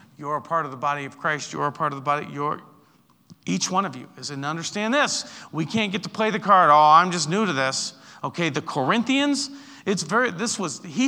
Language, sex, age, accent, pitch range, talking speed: English, male, 40-59, American, 160-230 Hz, 240 wpm